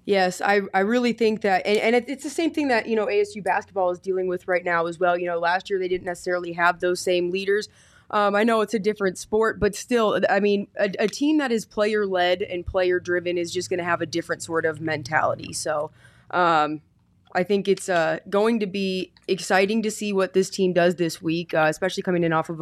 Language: English